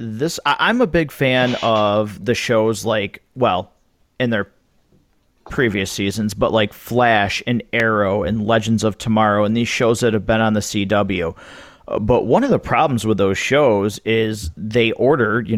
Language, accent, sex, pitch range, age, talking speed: English, American, male, 105-125 Hz, 40-59, 170 wpm